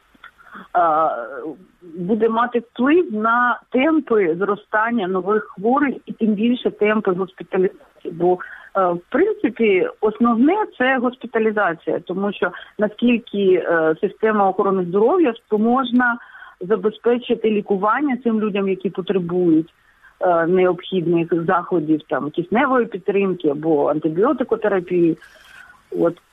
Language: Russian